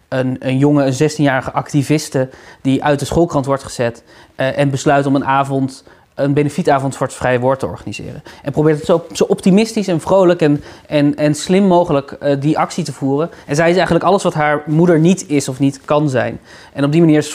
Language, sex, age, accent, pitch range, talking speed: Dutch, male, 20-39, Dutch, 135-160 Hz, 220 wpm